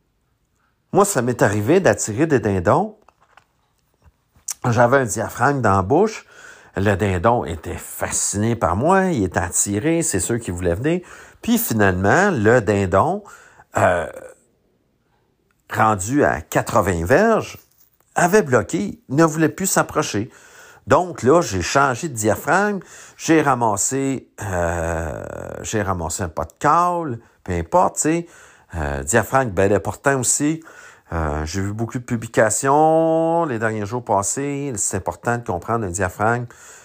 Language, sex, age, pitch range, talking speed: French, male, 50-69, 100-150 Hz, 135 wpm